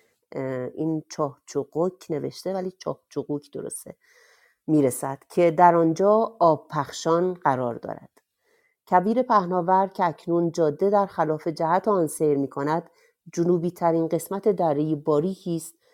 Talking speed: 115 wpm